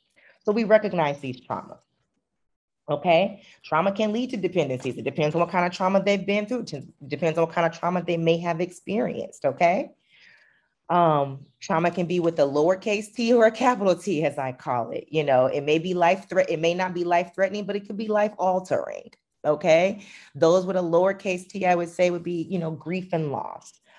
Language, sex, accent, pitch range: English, female, American, 140-185 Hz